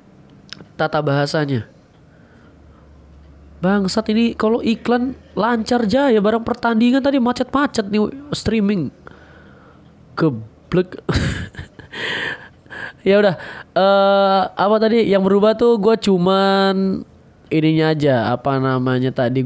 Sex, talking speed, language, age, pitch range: male, 95 wpm, Indonesian, 20-39, 130-180 Hz